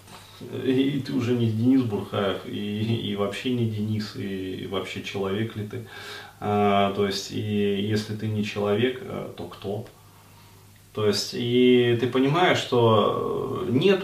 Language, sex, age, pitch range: Russian, male, 30-49, 100-120 Hz